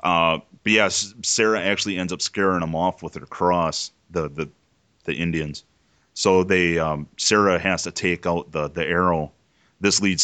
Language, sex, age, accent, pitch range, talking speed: English, male, 30-49, American, 80-95 Hz, 180 wpm